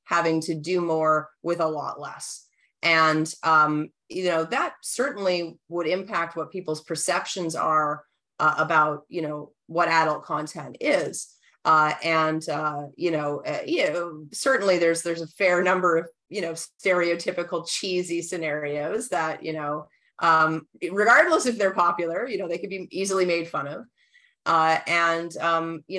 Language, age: English, 30-49